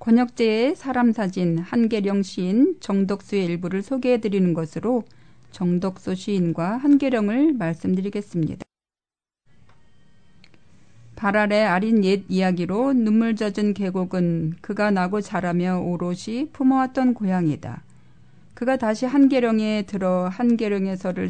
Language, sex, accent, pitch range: Korean, female, native, 185-240 Hz